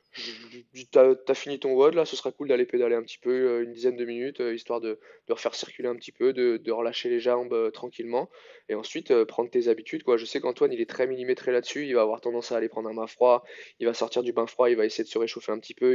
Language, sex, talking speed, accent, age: French, male, 280 wpm, French, 20-39